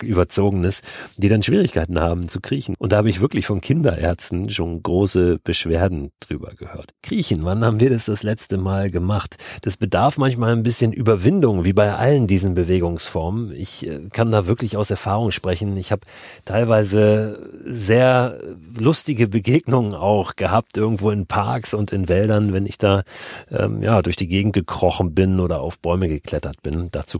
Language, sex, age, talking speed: German, male, 40-59, 170 wpm